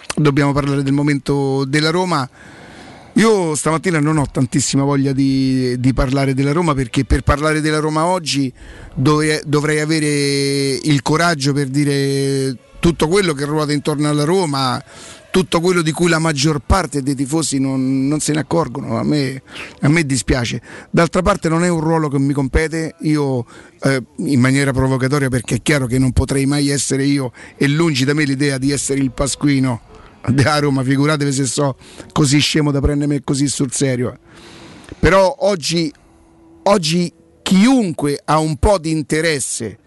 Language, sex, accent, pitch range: Italian, male, native, 140-170 Hz